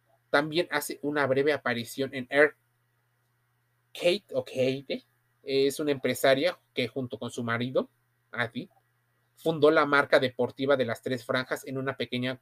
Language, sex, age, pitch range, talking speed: Spanish, male, 30-49, 120-170 Hz, 145 wpm